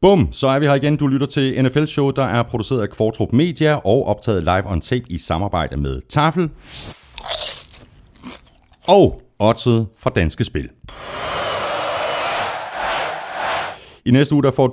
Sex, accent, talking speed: male, native, 145 wpm